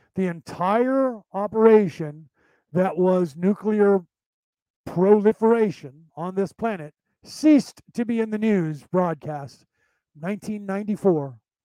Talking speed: 95 wpm